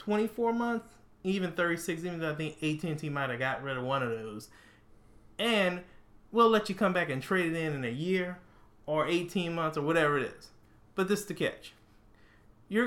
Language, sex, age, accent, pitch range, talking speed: English, male, 30-49, American, 125-180 Hz, 205 wpm